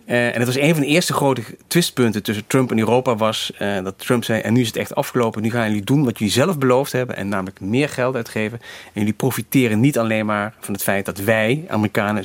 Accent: Dutch